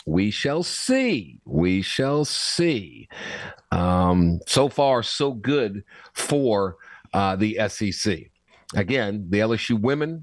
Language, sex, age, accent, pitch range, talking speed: English, male, 50-69, American, 100-130 Hz, 110 wpm